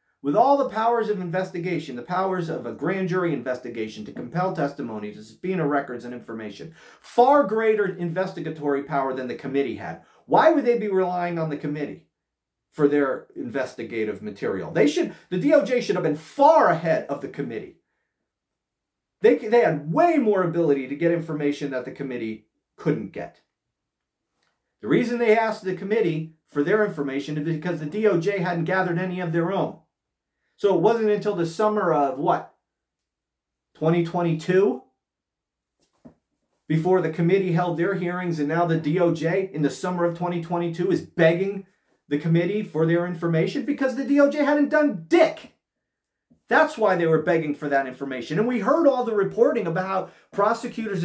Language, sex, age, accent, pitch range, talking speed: English, male, 40-59, American, 155-220 Hz, 165 wpm